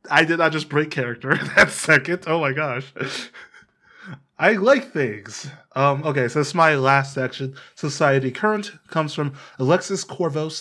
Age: 20-39